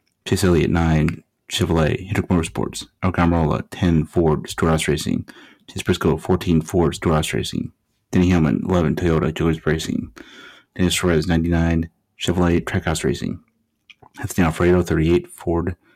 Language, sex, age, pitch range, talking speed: English, male, 30-49, 80-90 Hz, 130 wpm